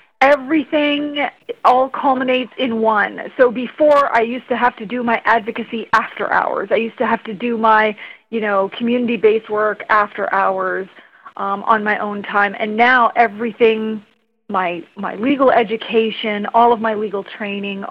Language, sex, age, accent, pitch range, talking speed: English, female, 40-59, American, 205-245 Hz, 160 wpm